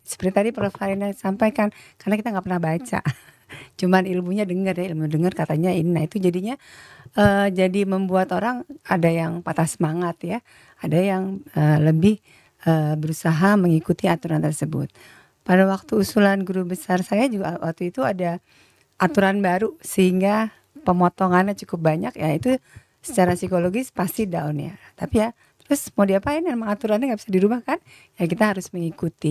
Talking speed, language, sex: 155 wpm, Indonesian, female